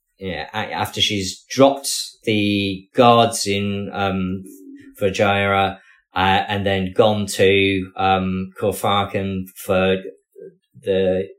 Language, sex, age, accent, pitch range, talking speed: English, male, 20-39, British, 95-105 Hz, 100 wpm